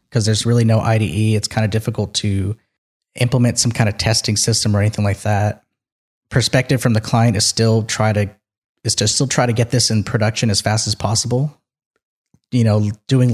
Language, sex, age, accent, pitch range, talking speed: English, male, 30-49, American, 105-120 Hz, 200 wpm